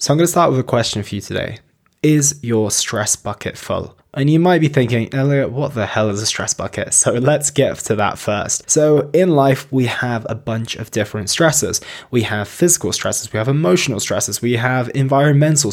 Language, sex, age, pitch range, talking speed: English, male, 20-39, 110-135 Hz, 210 wpm